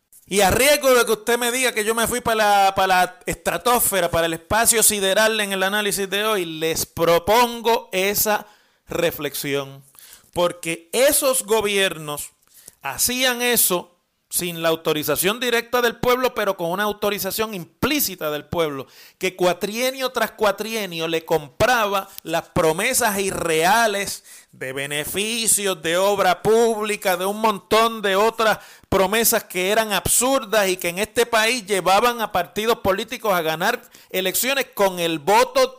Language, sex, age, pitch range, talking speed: Spanish, male, 30-49, 165-220 Hz, 145 wpm